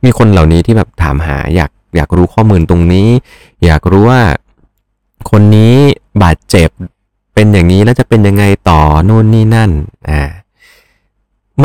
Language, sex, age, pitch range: Thai, male, 30-49, 80-105 Hz